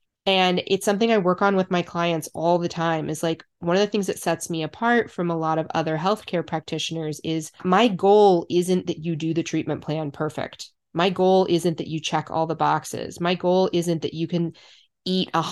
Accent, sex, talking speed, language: American, female, 215 wpm, English